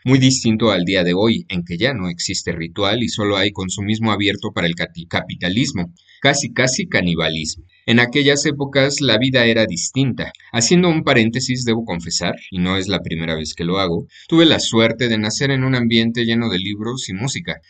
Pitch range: 95-125 Hz